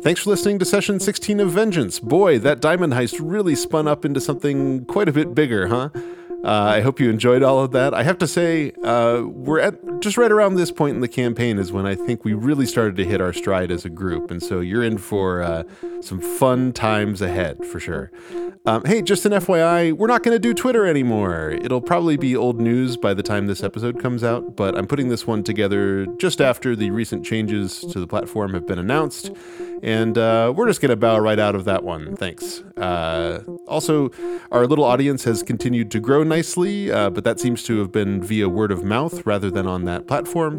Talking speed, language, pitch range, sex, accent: 225 wpm, English, 110-175 Hz, male, American